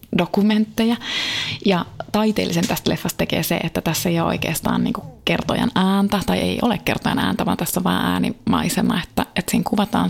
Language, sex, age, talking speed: Finnish, female, 20-39, 170 wpm